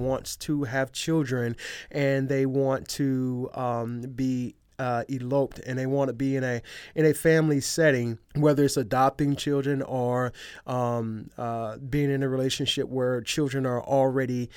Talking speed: 155 wpm